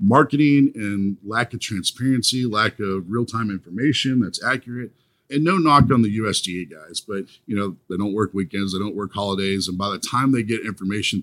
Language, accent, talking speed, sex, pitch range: English, American, 200 wpm, male, 95-120 Hz